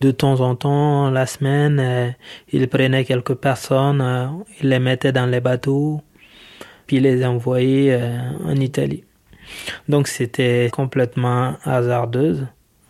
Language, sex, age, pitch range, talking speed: French, male, 20-39, 125-145 Hz, 130 wpm